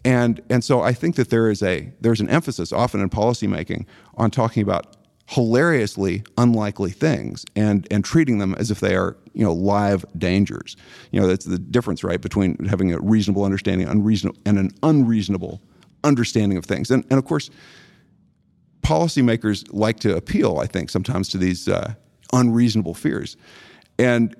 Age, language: 50-69, English